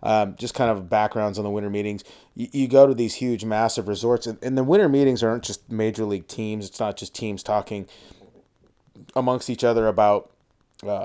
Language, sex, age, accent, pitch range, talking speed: English, male, 30-49, American, 105-125 Hz, 200 wpm